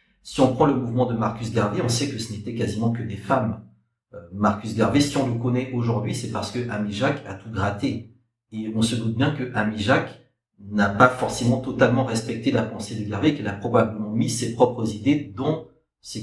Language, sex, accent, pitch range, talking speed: French, male, French, 110-130 Hz, 210 wpm